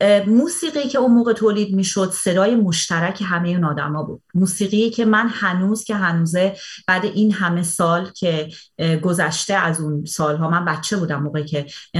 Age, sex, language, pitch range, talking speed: 30-49, female, Persian, 165-215 Hz, 165 wpm